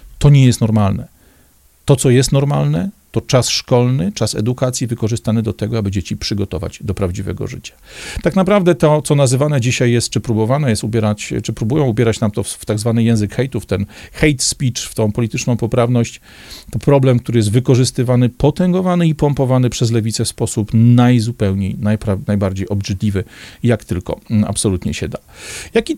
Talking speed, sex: 170 wpm, male